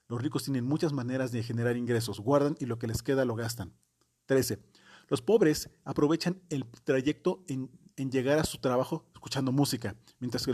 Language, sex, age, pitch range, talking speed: Spanish, male, 40-59, 120-145 Hz, 180 wpm